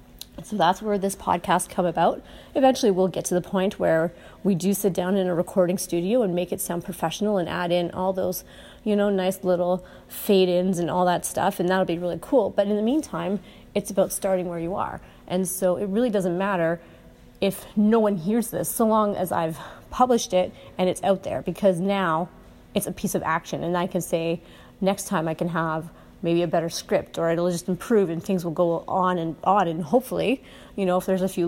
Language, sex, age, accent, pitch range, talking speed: English, female, 30-49, American, 175-210 Hz, 220 wpm